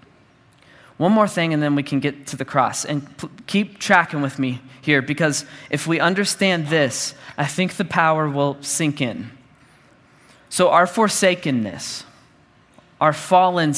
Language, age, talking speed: English, 20-39, 150 wpm